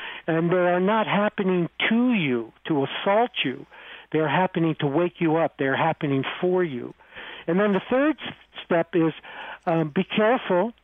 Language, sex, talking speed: English, male, 170 wpm